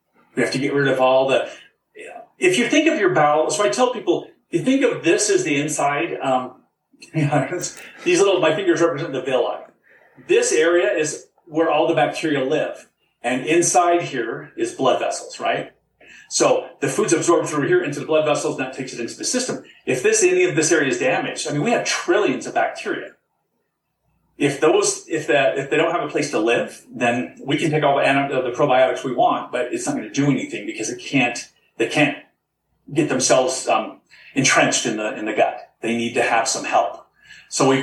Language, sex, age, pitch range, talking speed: English, male, 40-59, 130-200 Hz, 205 wpm